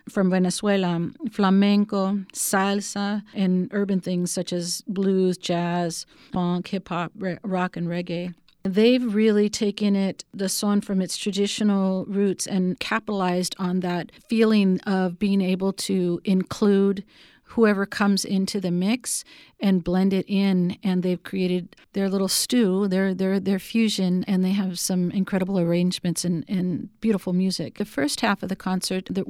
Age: 40-59